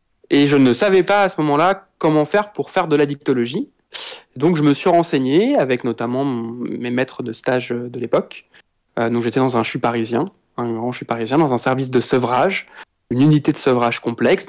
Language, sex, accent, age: French, male, French, 20-39